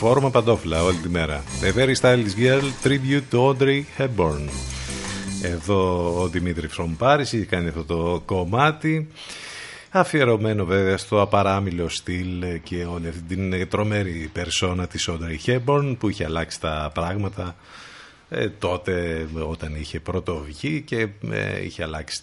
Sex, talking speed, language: male, 135 wpm, Greek